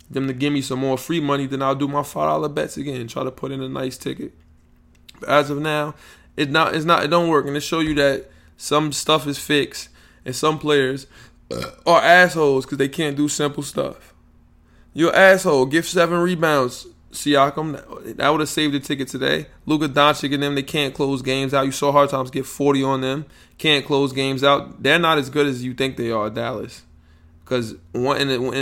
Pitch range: 115-145 Hz